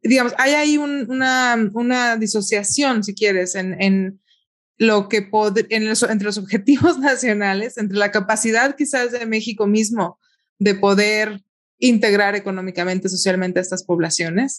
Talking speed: 145 wpm